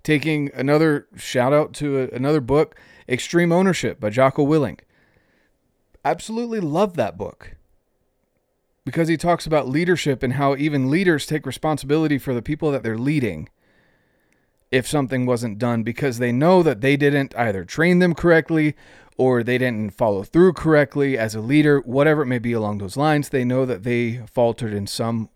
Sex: male